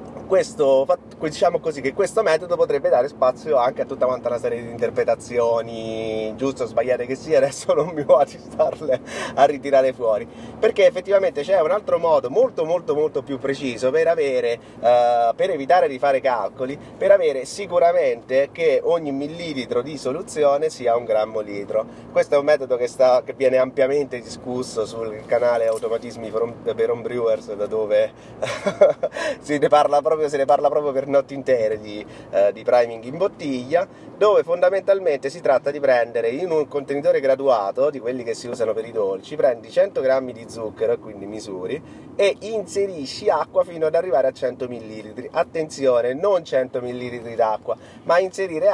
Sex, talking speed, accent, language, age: male, 170 wpm, native, Italian, 30-49